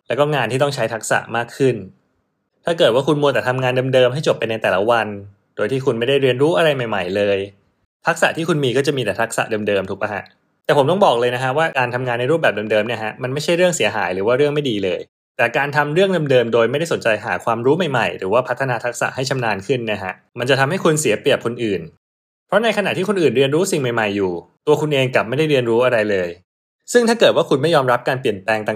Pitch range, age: 110-145 Hz, 20-39